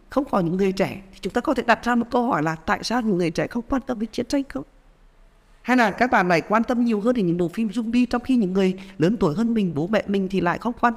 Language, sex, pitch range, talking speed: Vietnamese, female, 150-220 Hz, 310 wpm